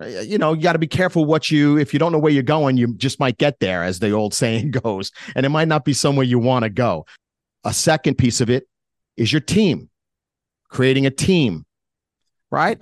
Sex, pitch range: male, 115-150 Hz